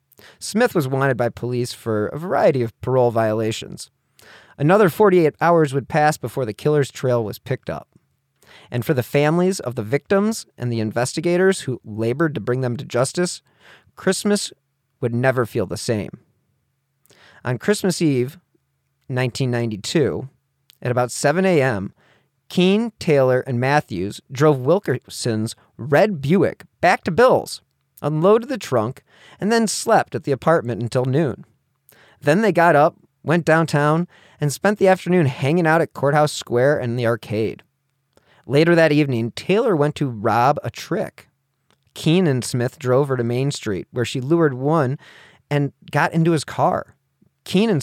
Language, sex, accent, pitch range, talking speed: English, male, American, 125-160 Hz, 150 wpm